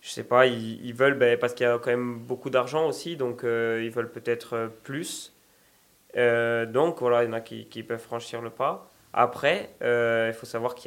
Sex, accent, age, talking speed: male, French, 20-39, 230 wpm